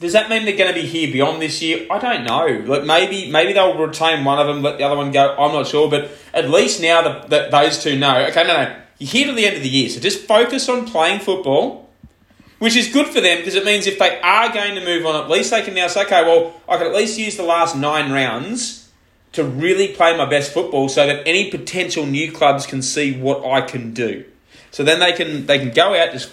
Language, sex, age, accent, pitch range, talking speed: English, male, 20-39, Australian, 130-175 Hz, 260 wpm